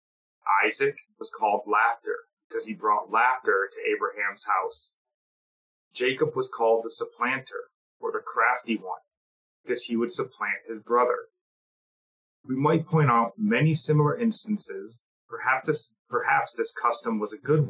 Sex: male